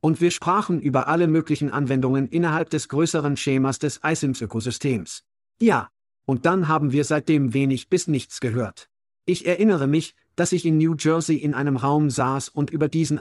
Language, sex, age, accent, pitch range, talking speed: German, male, 50-69, German, 135-160 Hz, 175 wpm